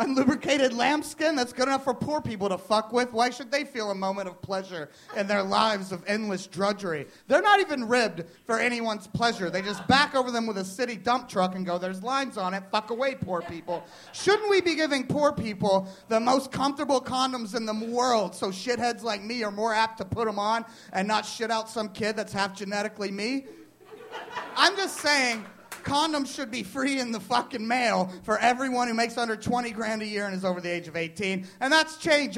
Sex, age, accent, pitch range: male, 30-49, American, 205-275 Hz